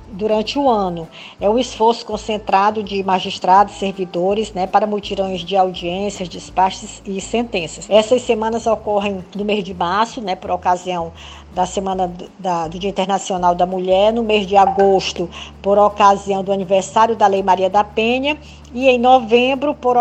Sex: female